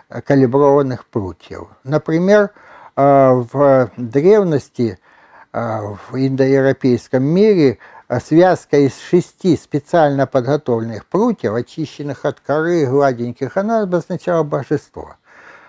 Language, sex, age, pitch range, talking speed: Russian, male, 60-79, 130-175 Hz, 80 wpm